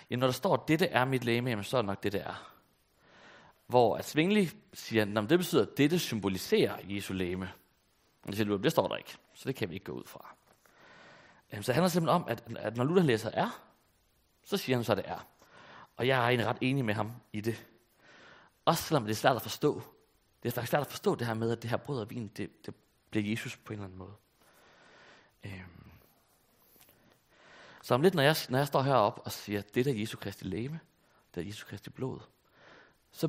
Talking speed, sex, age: 225 wpm, male, 30-49